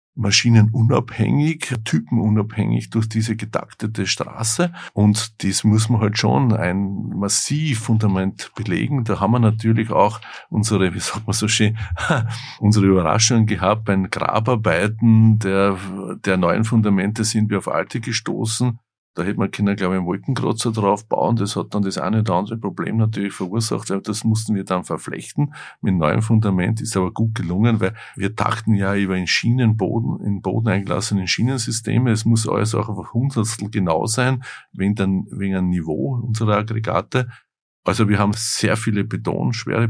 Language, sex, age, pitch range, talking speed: German, male, 50-69, 100-115 Hz, 160 wpm